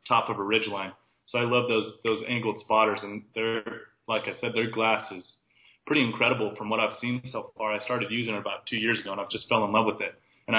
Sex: male